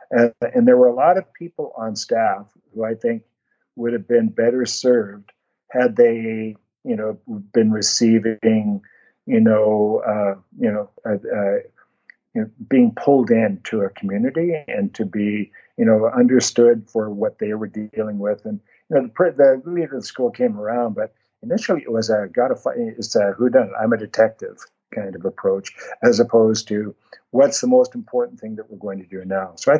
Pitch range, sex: 110-170 Hz, male